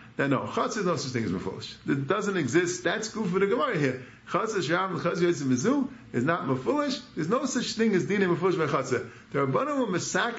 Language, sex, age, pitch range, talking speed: English, male, 50-69, 125-185 Hz, 195 wpm